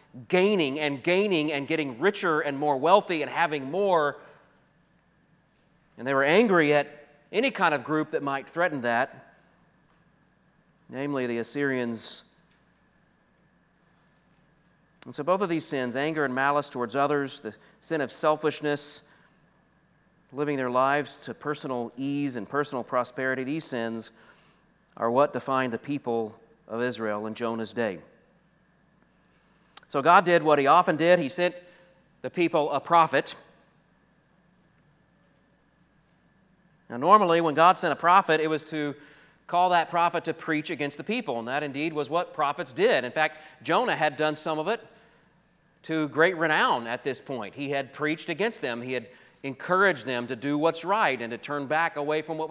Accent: American